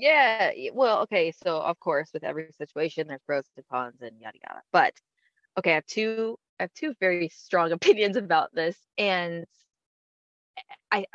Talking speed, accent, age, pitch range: 165 wpm, American, 20-39, 165-225 Hz